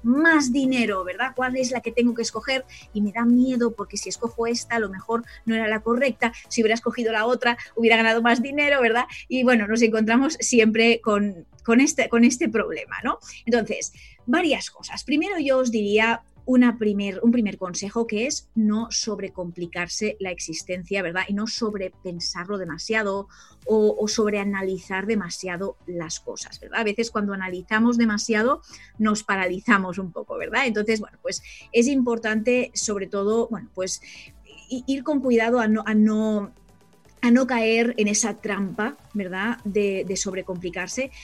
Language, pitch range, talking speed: Spanish, 210-250 Hz, 160 wpm